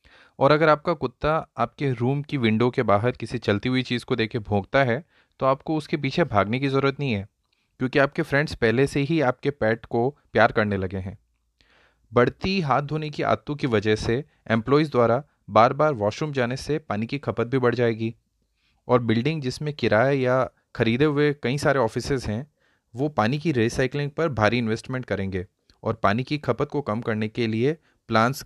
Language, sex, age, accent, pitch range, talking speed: Hindi, male, 30-49, native, 115-145 Hz, 190 wpm